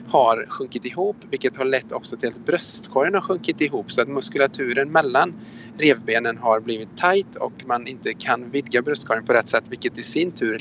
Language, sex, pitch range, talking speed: Swedish, male, 110-140 Hz, 190 wpm